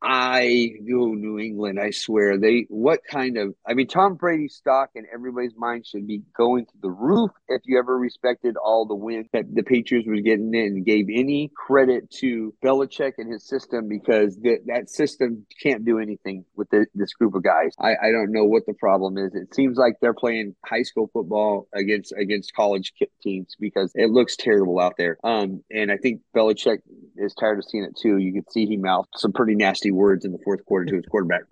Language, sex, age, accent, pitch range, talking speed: English, male, 30-49, American, 105-125 Hz, 215 wpm